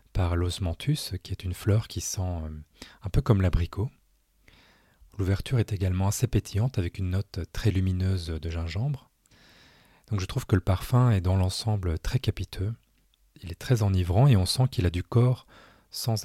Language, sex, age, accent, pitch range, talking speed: French, male, 30-49, French, 85-105 Hz, 175 wpm